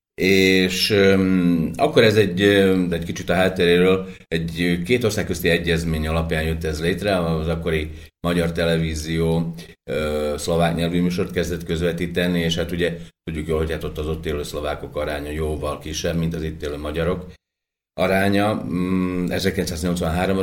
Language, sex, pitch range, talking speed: Slovak, male, 75-85 Hz, 145 wpm